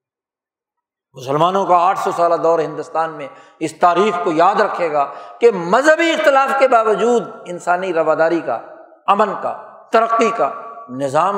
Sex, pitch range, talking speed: male, 195-270 Hz, 140 wpm